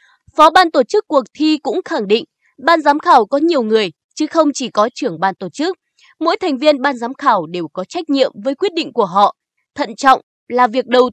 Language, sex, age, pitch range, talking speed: Vietnamese, female, 20-39, 220-315 Hz, 230 wpm